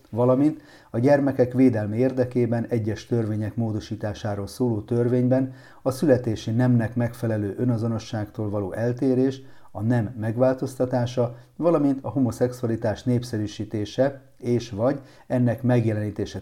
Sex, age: male, 40-59